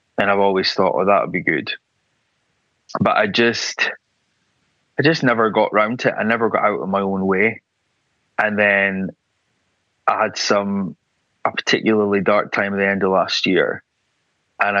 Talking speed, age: 170 wpm, 20-39